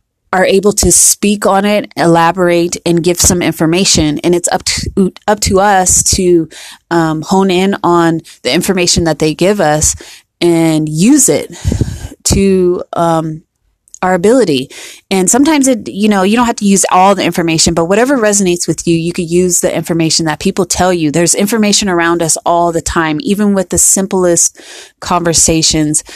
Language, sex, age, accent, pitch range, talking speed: English, female, 20-39, American, 160-190 Hz, 170 wpm